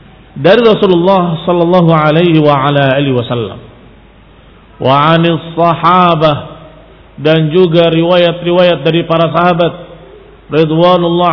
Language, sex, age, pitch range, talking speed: Indonesian, male, 50-69, 155-185 Hz, 85 wpm